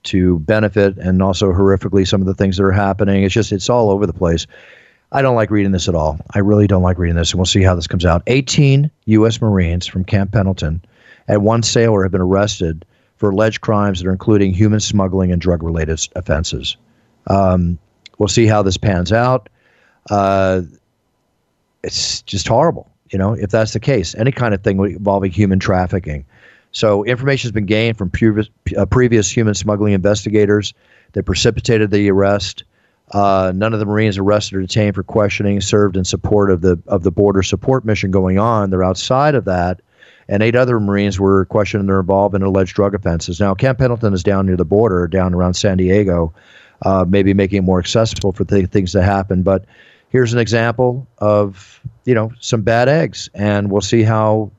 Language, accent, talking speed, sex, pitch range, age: English, American, 195 wpm, male, 95-110 Hz, 40-59